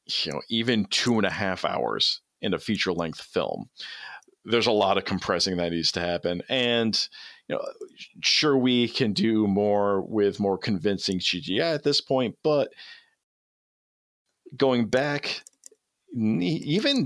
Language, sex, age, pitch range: English, male, 40-59, 95-120 Hz